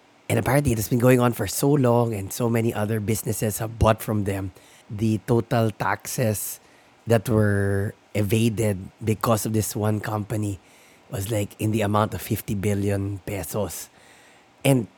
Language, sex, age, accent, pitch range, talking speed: English, male, 20-39, Filipino, 105-120 Hz, 160 wpm